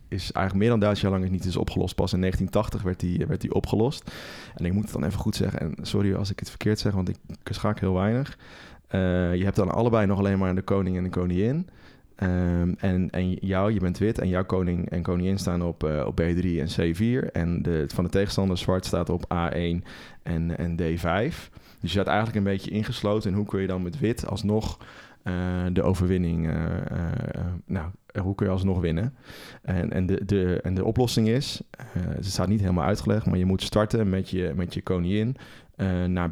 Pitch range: 90-100 Hz